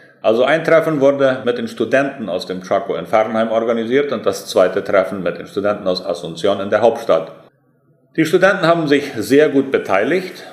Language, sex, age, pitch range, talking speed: German, male, 40-59, 105-140 Hz, 180 wpm